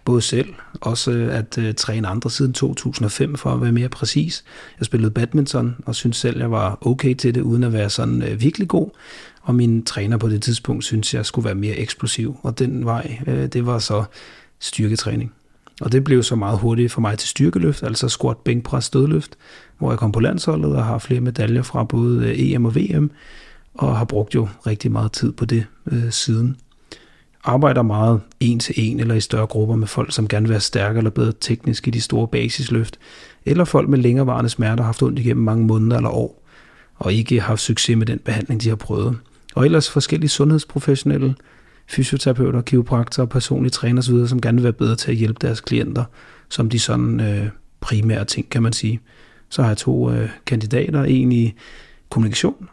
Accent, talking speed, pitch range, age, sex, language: native, 200 wpm, 110-130 Hz, 30-49, male, Danish